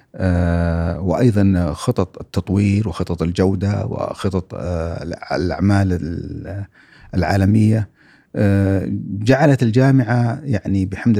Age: 50-69